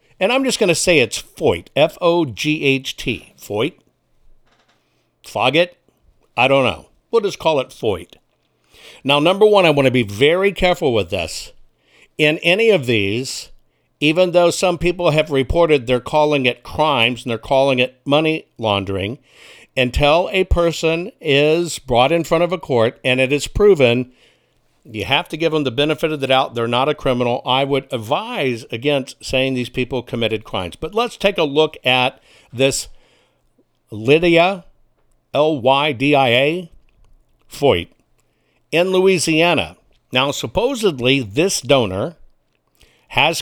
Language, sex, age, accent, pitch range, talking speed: English, male, 60-79, American, 125-170 Hz, 145 wpm